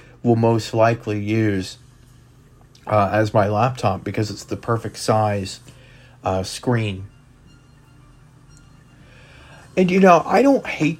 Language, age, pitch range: English, 40-59, 95-125 Hz